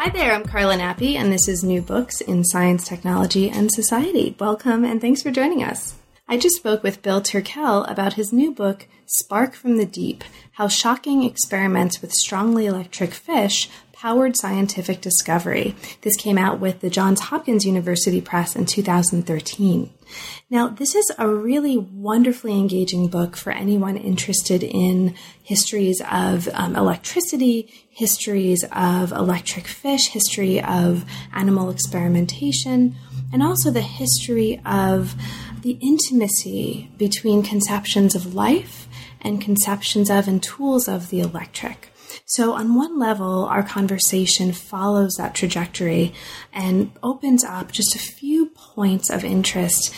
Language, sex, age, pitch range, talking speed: English, female, 30-49, 180-220 Hz, 140 wpm